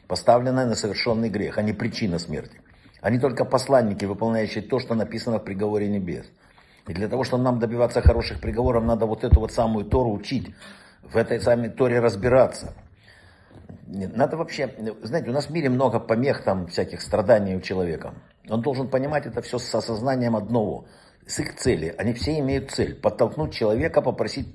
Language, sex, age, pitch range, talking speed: Russian, male, 60-79, 110-135 Hz, 170 wpm